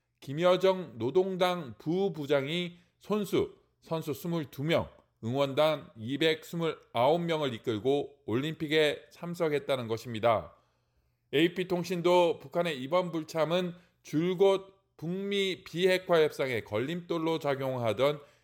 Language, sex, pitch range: Korean, male, 130-170 Hz